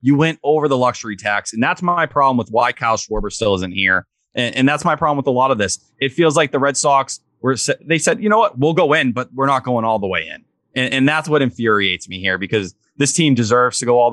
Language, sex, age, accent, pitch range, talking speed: English, male, 30-49, American, 110-140 Hz, 270 wpm